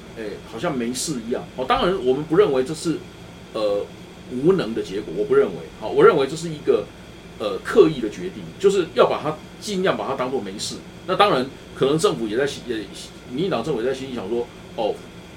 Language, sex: Chinese, male